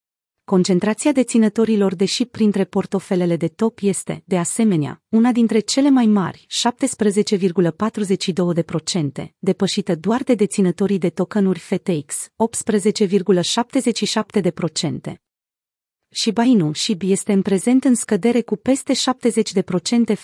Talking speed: 115 wpm